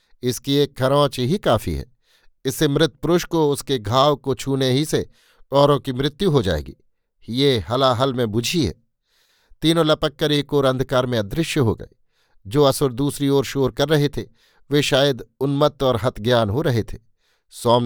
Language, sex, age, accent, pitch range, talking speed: Hindi, male, 50-69, native, 125-145 Hz, 175 wpm